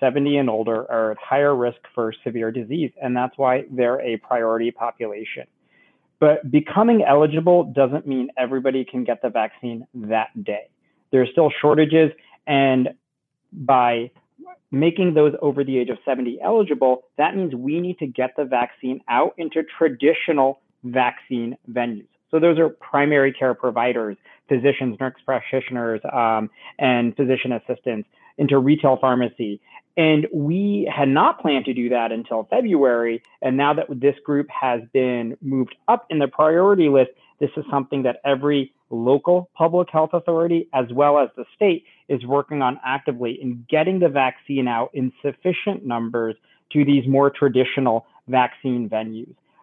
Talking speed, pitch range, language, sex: 155 wpm, 120-150 Hz, English, male